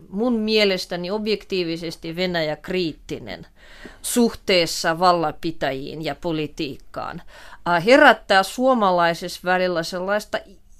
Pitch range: 170-220 Hz